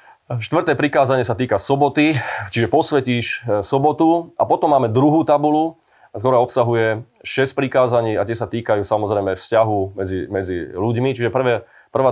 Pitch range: 105-130 Hz